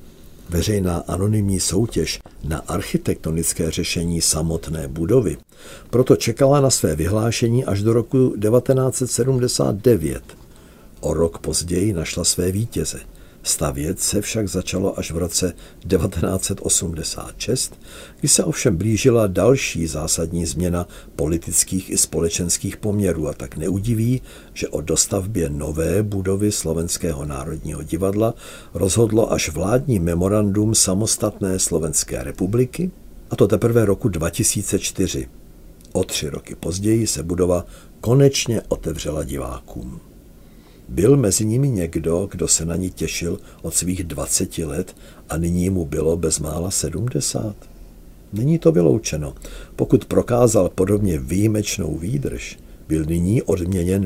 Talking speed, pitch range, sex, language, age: 115 wpm, 80-105 Hz, male, Czech, 50-69